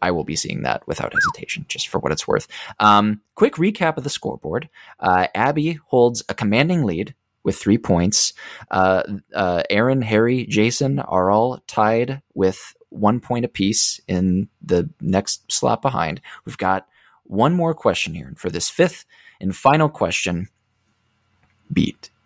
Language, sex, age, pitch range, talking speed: English, male, 20-39, 100-135 Hz, 155 wpm